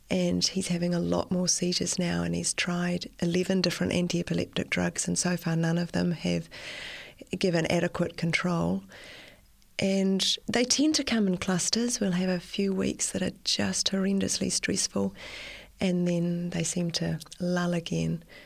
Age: 30-49